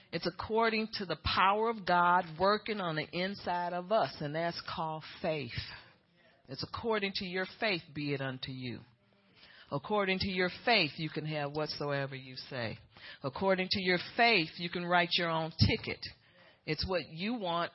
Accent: American